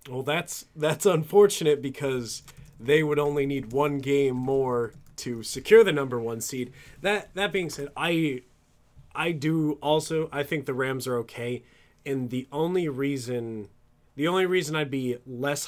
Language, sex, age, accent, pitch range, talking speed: English, male, 30-49, American, 120-155 Hz, 160 wpm